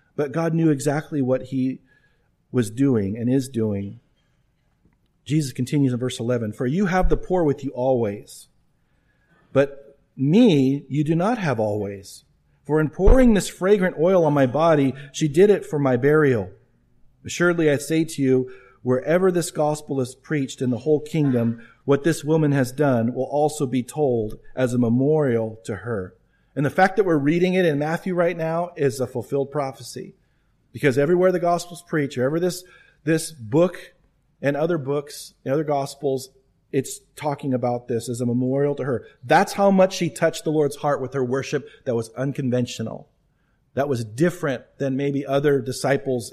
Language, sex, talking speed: English, male, 175 wpm